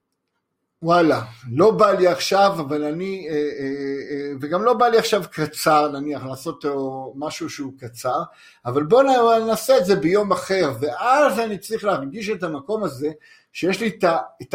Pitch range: 145-200 Hz